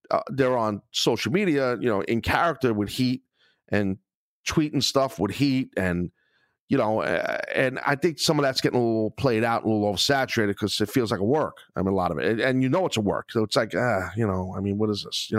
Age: 40-59